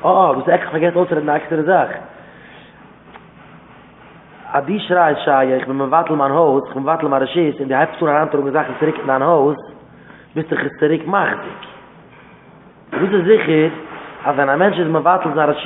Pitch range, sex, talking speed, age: 160-215 Hz, male, 155 wpm, 30-49